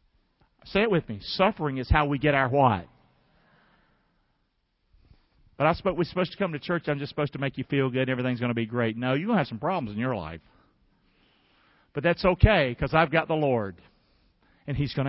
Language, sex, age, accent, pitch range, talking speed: English, male, 50-69, American, 145-245 Hz, 215 wpm